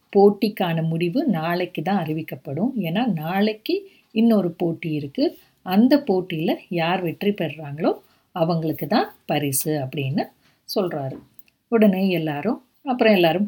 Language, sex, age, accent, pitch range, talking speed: Tamil, female, 50-69, native, 160-205 Hz, 110 wpm